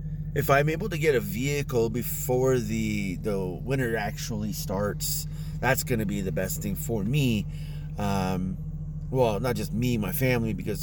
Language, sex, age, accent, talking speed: English, male, 30-49, American, 160 wpm